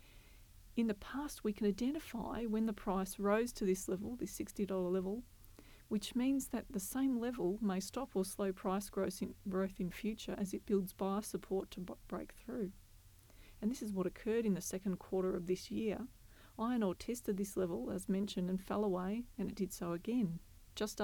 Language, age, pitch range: English, 30-49, 185-215 Hz